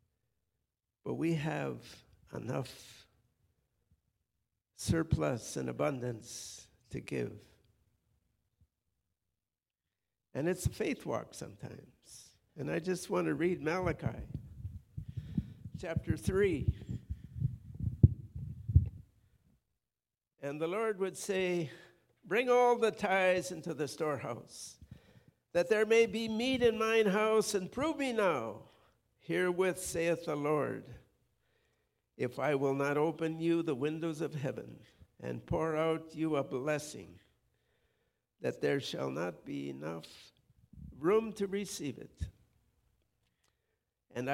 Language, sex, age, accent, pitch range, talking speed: English, male, 60-79, American, 130-185 Hz, 105 wpm